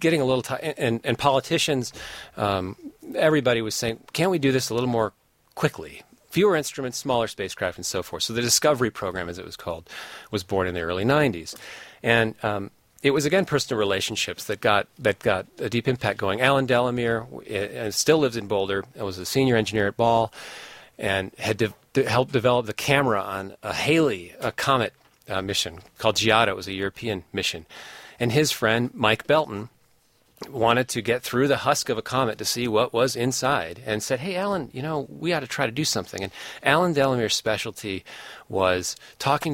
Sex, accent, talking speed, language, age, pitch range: male, American, 200 wpm, English, 40-59, 105-135 Hz